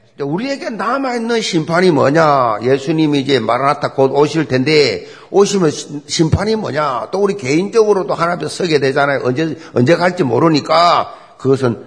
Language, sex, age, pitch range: Korean, male, 50-69, 140-200 Hz